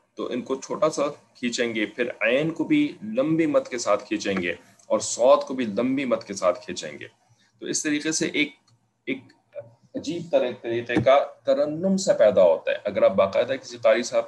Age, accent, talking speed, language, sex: 30-49, Indian, 185 wpm, English, male